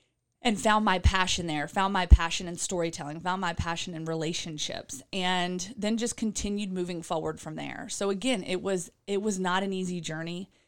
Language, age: English, 30-49